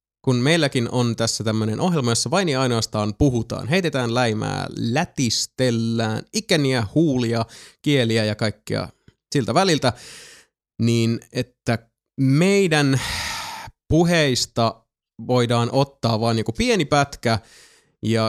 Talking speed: 105 wpm